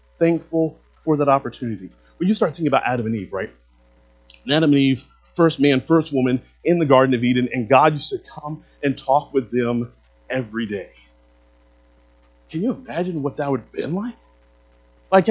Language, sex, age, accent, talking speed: English, male, 30-49, American, 180 wpm